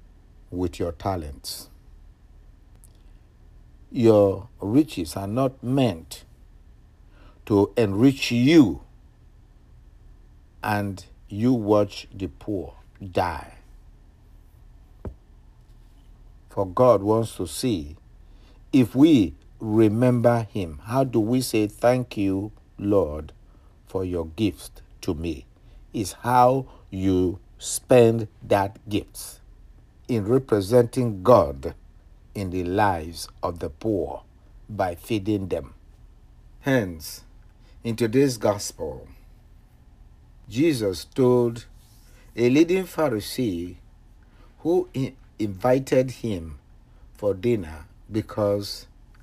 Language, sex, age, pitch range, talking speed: English, male, 60-79, 90-120 Hz, 85 wpm